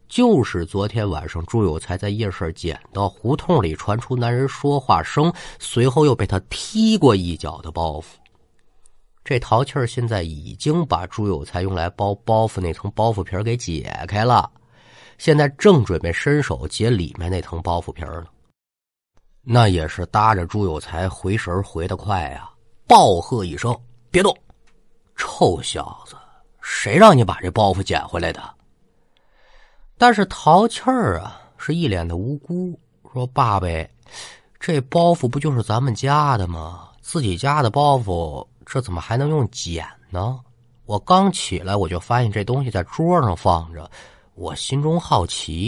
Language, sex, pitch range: Chinese, male, 90-140 Hz